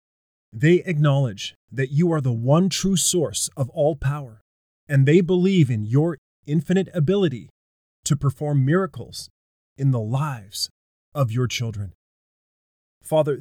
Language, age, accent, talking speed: English, 20-39, American, 130 wpm